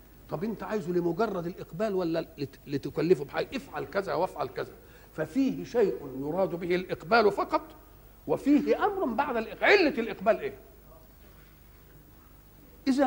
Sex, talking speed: male, 120 wpm